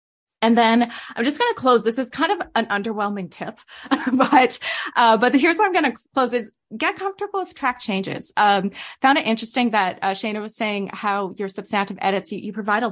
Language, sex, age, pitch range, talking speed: English, female, 20-39, 190-245 Hz, 215 wpm